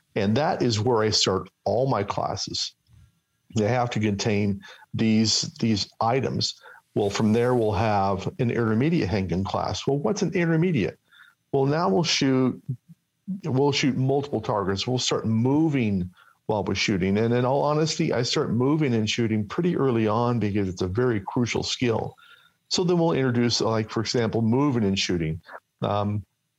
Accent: American